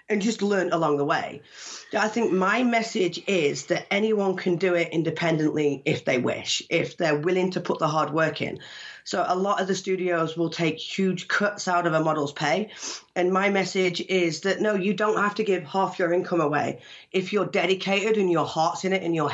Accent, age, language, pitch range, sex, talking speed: British, 40-59, English, 170-205 Hz, female, 215 wpm